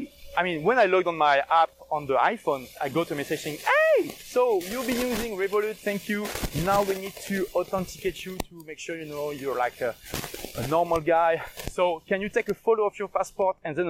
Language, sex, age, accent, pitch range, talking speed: English, male, 30-49, French, 165-250 Hz, 225 wpm